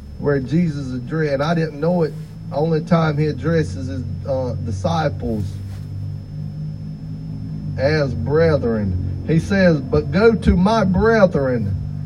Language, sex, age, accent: English, male, 40-59, American